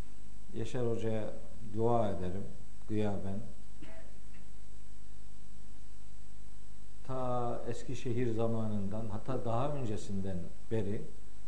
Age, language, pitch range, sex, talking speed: 50-69, Turkish, 105-125 Hz, male, 70 wpm